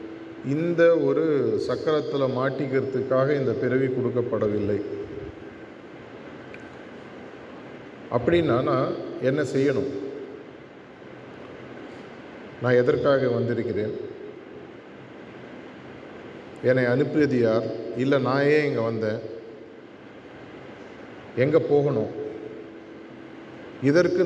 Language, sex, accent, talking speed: Tamil, male, native, 60 wpm